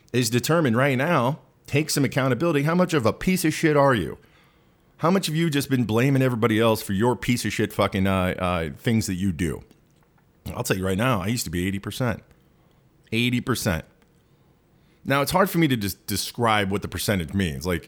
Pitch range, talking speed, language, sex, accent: 100-140 Hz, 205 wpm, English, male, American